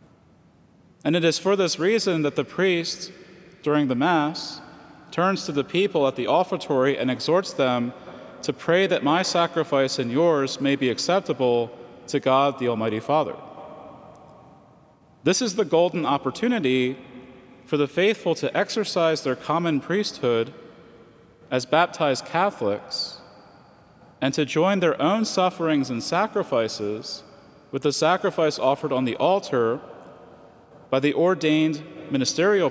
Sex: male